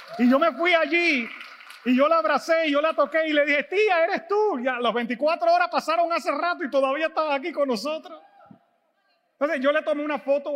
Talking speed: 215 wpm